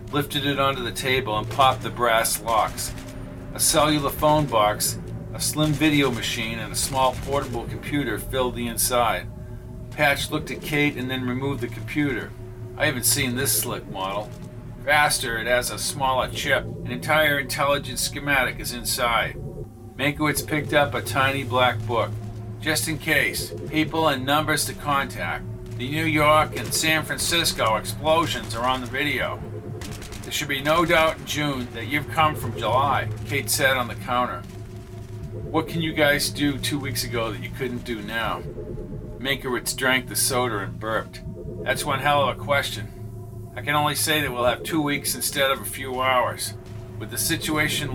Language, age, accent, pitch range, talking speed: English, 50-69, American, 115-145 Hz, 170 wpm